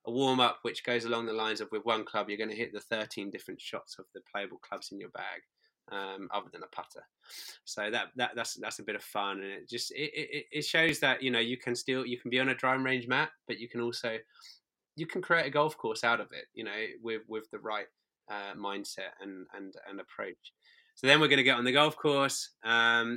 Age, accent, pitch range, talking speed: 20-39, British, 115-140 Hz, 255 wpm